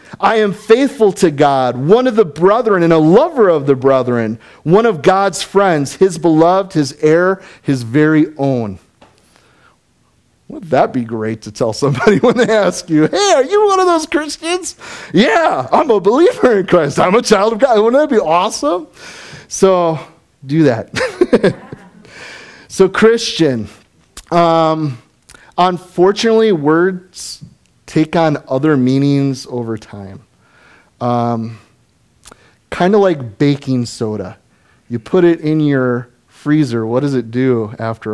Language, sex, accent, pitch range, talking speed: English, male, American, 120-180 Hz, 140 wpm